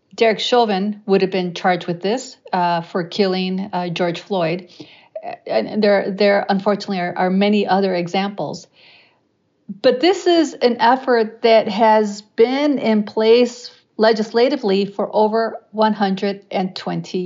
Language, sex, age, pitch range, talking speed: English, female, 50-69, 190-225 Hz, 130 wpm